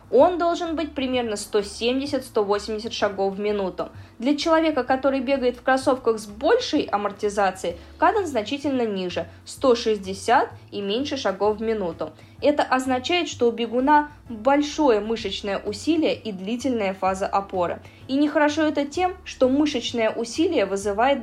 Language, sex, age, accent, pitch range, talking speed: Russian, female, 20-39, native, 205-275 Hz, 135 wpm